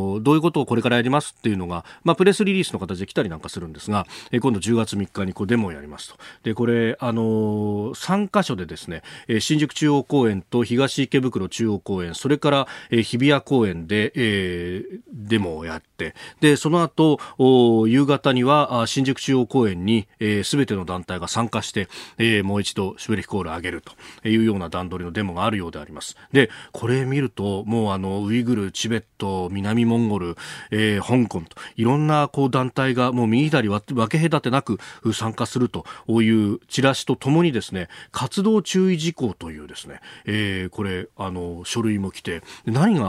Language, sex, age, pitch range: Japanese, male, 40-59, 105-140 Hz